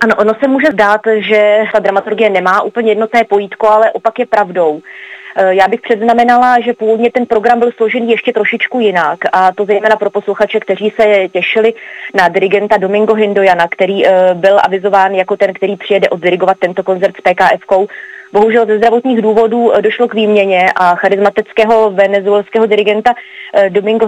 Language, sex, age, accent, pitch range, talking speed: Czech, female, 30-49, native, 195-230 Hz, 160 wpm